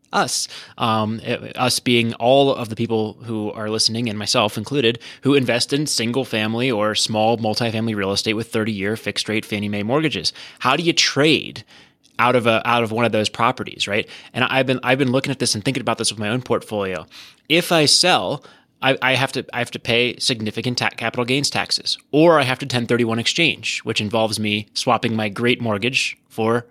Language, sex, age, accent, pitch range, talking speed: English, male, 20-39, American, 115-135 Hz, 205 wpm